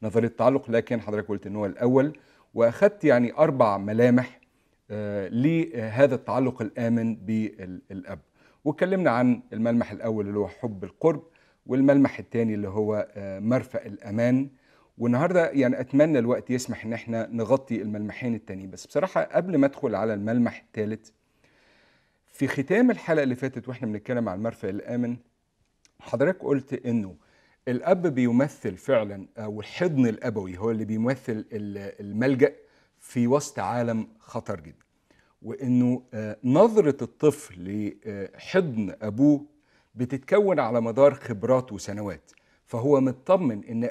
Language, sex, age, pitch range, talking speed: Arabic, male, 50-69, 110-135 Hz, 120 wpm